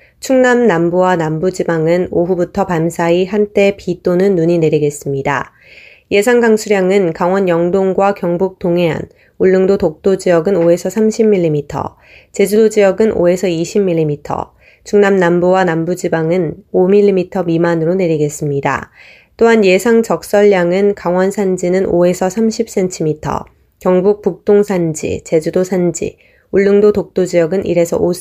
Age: 20-39